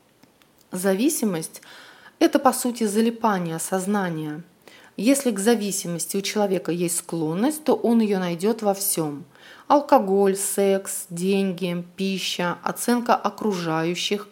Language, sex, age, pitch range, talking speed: Russian, female, 30-49, 175-230 Hz, 105 wpm